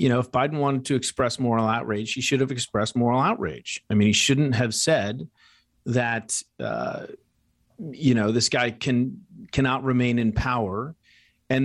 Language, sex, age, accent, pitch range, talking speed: English, male, 40-59, American, 120-150 Hz, 170 wpm